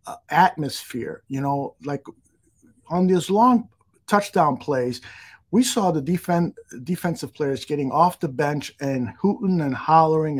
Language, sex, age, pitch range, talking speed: English, male, 50-69, 135-170 Hz, 140 wpm